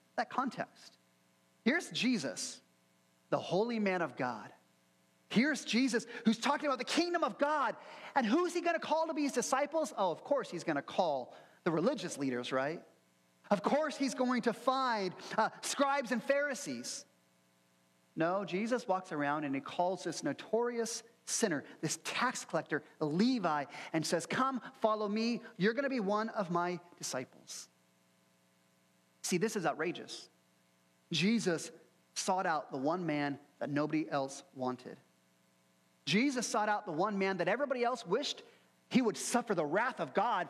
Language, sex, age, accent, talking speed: English, male, 40-59, American, 160 wpm